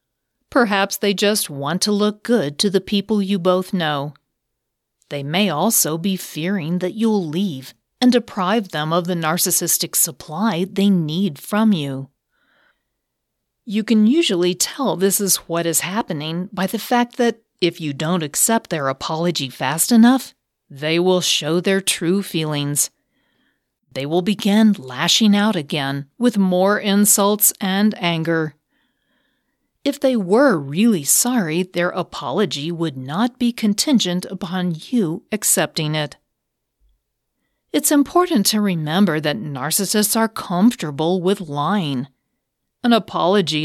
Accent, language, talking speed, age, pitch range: American, English, 135 wpm, 40-59, 160-220 Hz